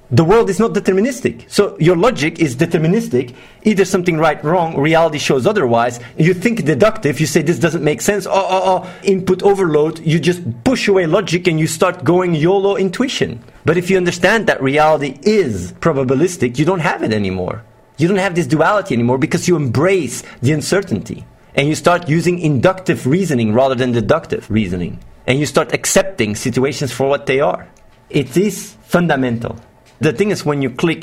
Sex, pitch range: male, 125-180 Hz